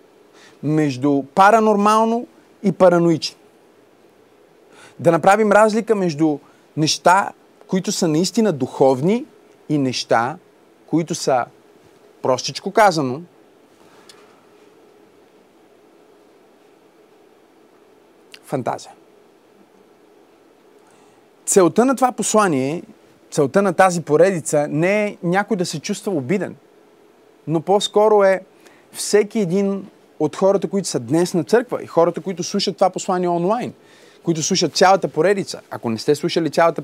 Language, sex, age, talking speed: Bulgarian, male, 30-49, 105 wpm